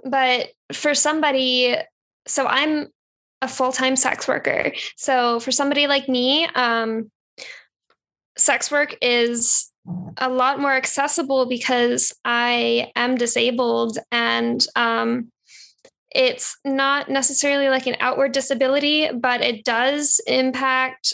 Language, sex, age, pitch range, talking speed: English, female, 10-29, 235-280 Hz, 115 wpm